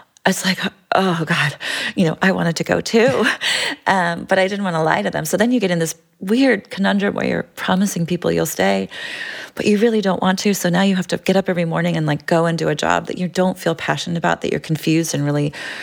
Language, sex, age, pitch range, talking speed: English, female, 30-49, 145-185 Hz, 255 wpm